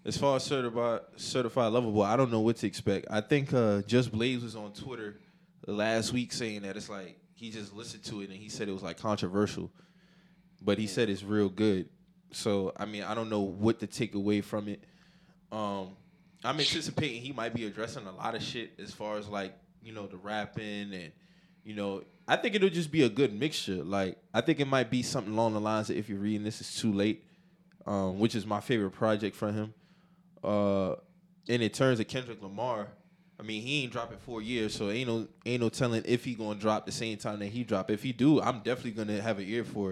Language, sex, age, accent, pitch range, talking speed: English, male, 20-39, American, 105-155 Hz, 230 wpm